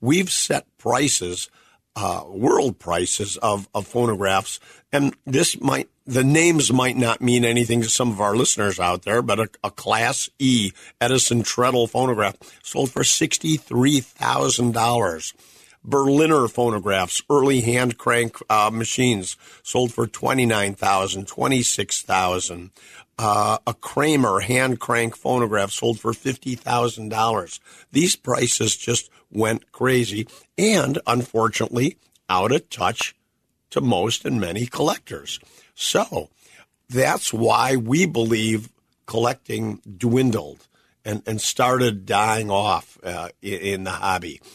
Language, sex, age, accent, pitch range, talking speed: English, male, 50-69, American, 105-125 Hz, 125 wpm